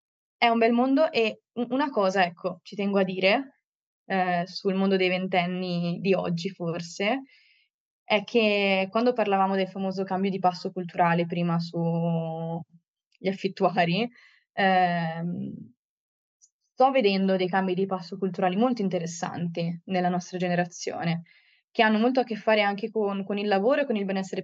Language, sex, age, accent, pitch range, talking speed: Italian, female, 20-39, native, 180-210 Hz, 150 wpm